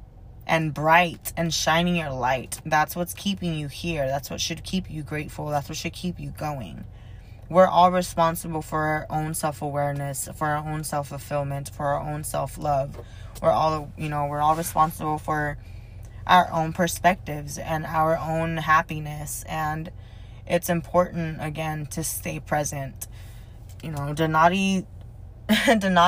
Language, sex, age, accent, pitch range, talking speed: English, female, 20-39, American, 135-165 Hz, 145 wpm